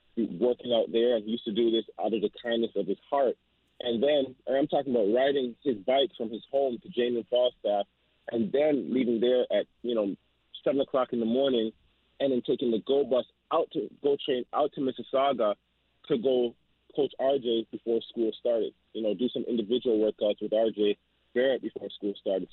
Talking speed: 195 wpm